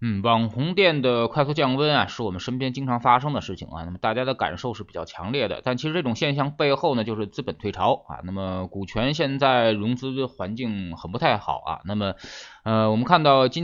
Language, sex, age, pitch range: Chinese, male, 20-39, 100-135 Hz